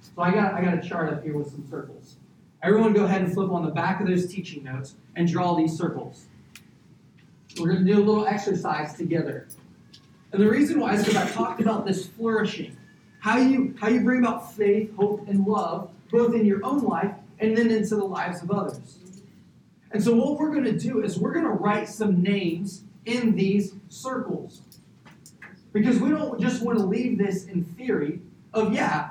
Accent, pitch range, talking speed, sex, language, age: American, 170-220 Hz, 200 wpm, male, English, 40-59